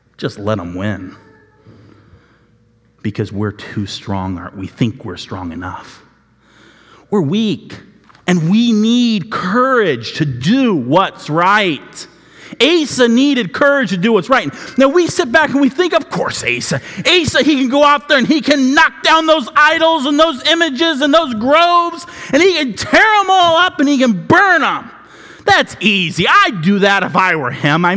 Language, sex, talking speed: English, male, 175 wpm